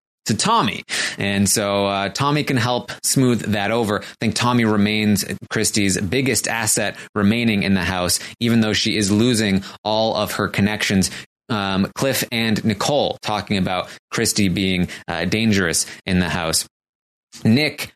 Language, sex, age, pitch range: English, male, 20-39, 95-120 Hz